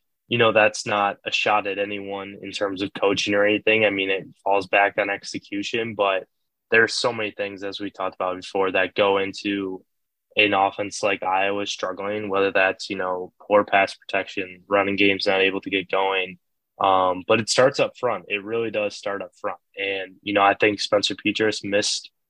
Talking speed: 195 wpm